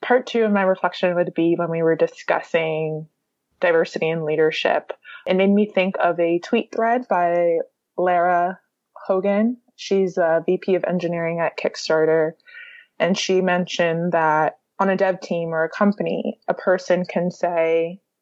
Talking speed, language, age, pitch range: 155 wpm, English, 20-39, 170-200 Hz